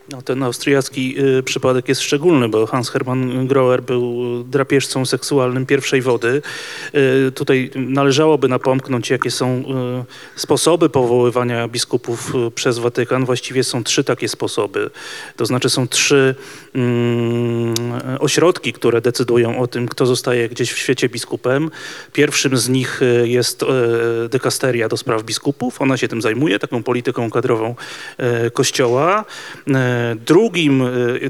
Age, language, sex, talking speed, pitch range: 30-49, Polish, male, 115 wpm, 125-140 Hz